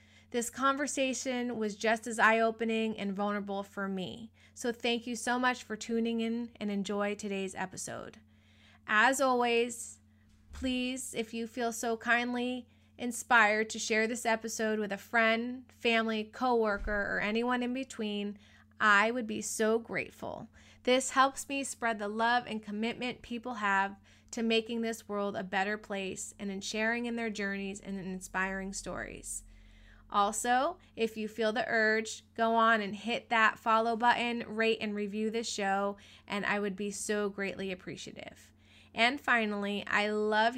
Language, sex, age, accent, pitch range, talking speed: English, female, 20-39, American, 200-235 Hz, 155 wpm